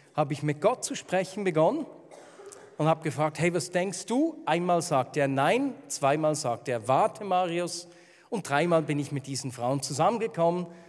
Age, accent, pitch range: 50-69, German, 155-225 Hz